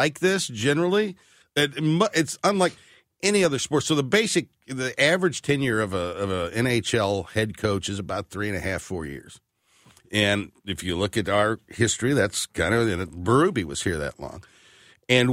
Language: English